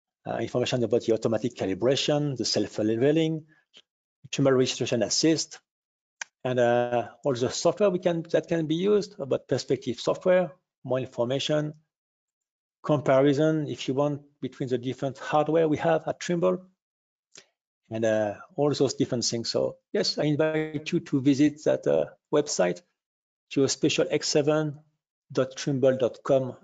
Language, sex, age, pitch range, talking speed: English, male, 50-69, 130-160 Hz, 135 wpm